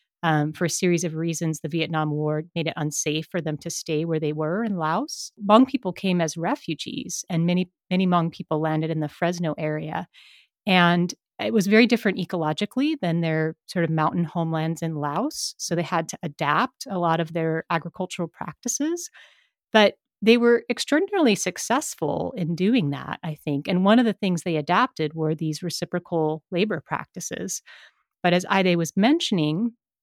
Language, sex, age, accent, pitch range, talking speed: English, female, 30-49, American, 160-200 Hz, 175 wpm